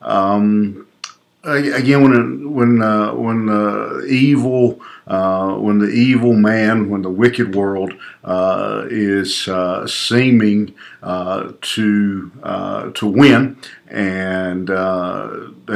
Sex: male